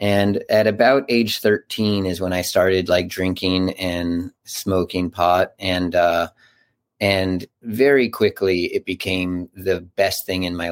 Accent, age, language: American, 30-49, English